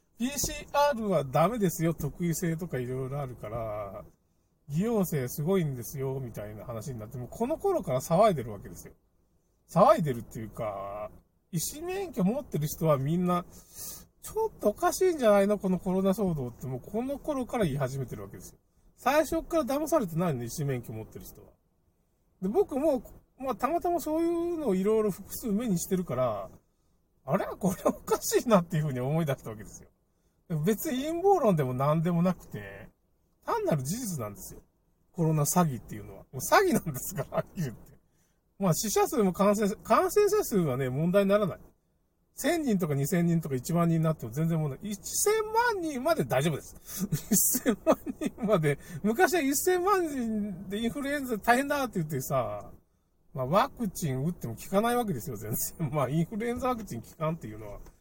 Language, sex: Japanese, male